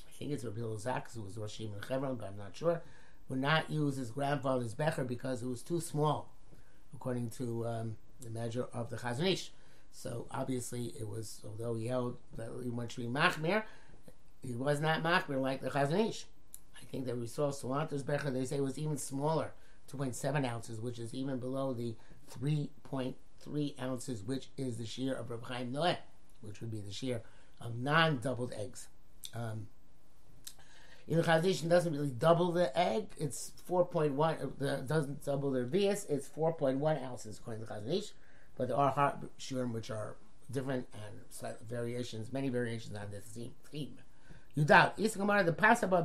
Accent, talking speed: American, 180 wpm